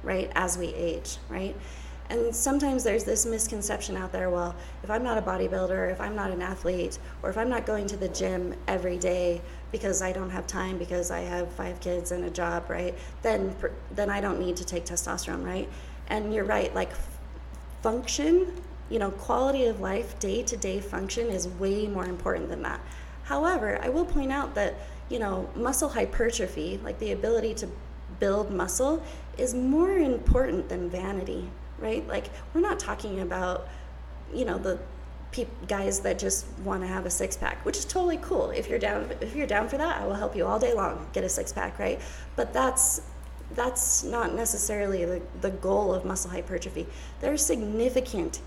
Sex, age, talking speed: female, 20-39, 185 wpm